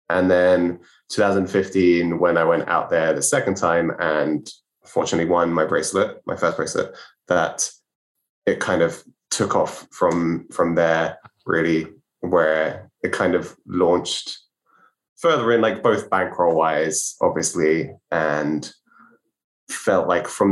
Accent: British